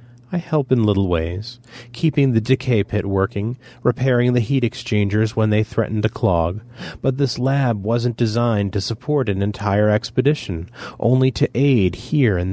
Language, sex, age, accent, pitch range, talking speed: English, male, 30-49, American, 100-125 Hz, 165 wpm